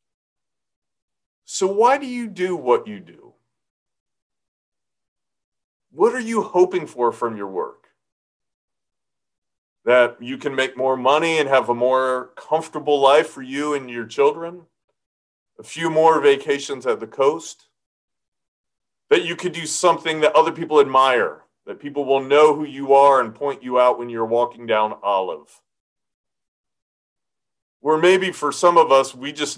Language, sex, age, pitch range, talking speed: English, male, 40-59, 125-180 Hz, 150 wpm